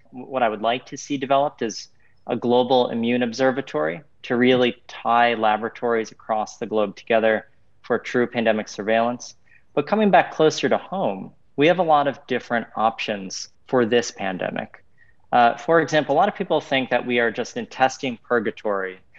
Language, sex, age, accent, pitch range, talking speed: English, male, 40-59, American, 110-140 Hz, 170 wpm